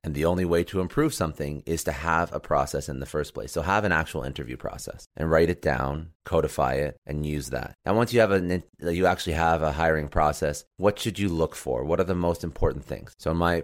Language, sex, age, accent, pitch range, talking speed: English, male, 30-49, American, 80-95 Hz, 245 wpm